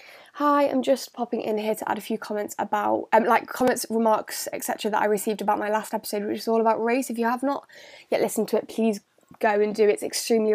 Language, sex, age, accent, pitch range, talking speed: English, female, 10-29, British, 210-260 Hz, 245 wpm